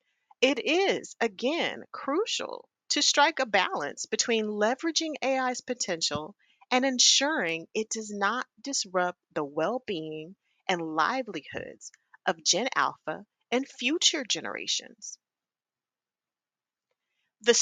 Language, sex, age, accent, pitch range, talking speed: English, female, 30-49, American, 185-270 Hz, 100 wpm